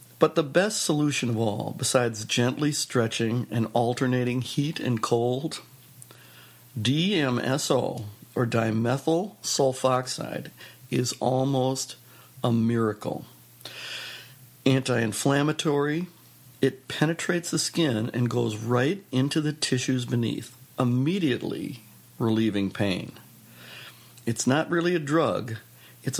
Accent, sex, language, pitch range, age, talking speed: American, male, English, 110-130 Hz, 60-79, 100 wpm